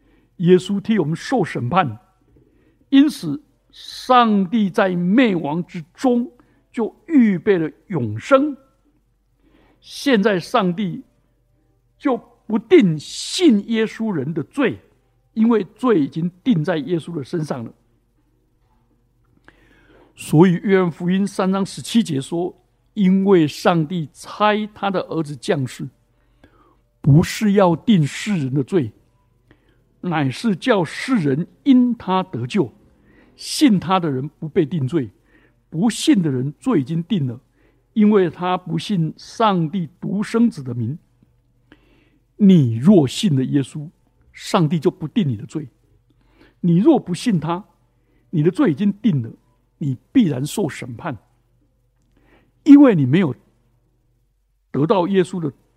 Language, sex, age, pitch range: Chinese, male, 60-79, 135-205 Hz